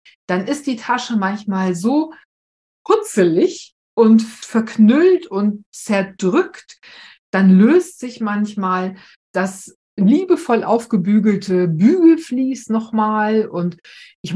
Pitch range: 180-230 Hz